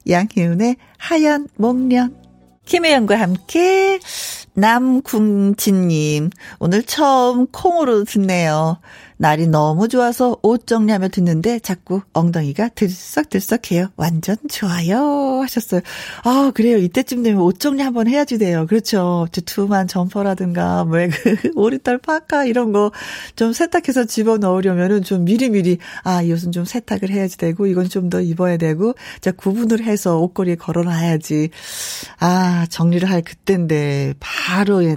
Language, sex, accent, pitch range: Korean, female, native, 180-255 Hz